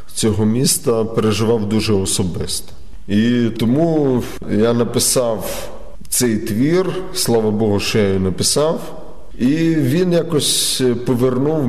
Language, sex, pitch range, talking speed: Ukrainian, male, 100-125 Hz, 110 wpm